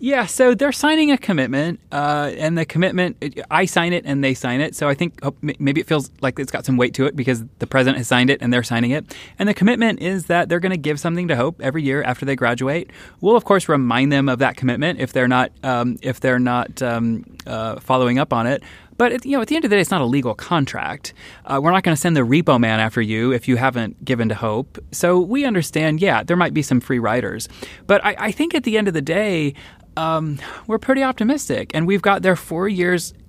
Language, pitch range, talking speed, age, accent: English, 125-175 Hz, 250 wpm, 20-39, American